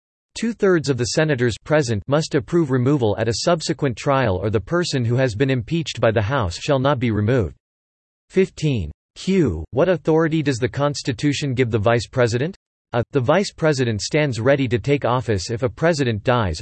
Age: 40-59